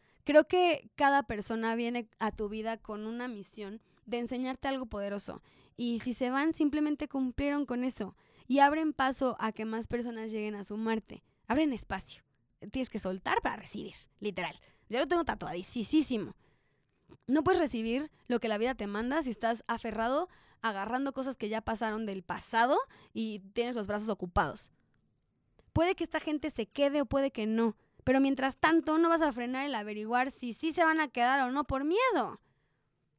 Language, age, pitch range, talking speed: Spanish, 20-39, 215-280 Hz, 180 wpm